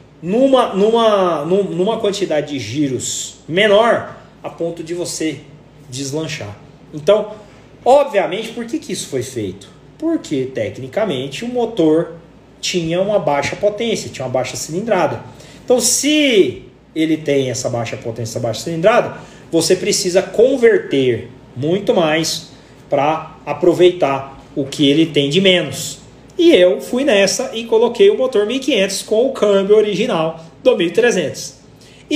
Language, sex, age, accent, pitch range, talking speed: Portuguese, male, 40-59, Brazilian, 150-230 Hz, 130 wpm